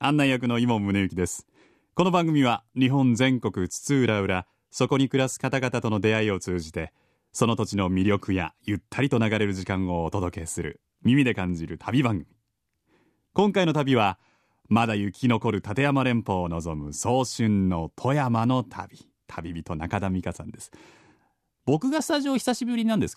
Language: Japanese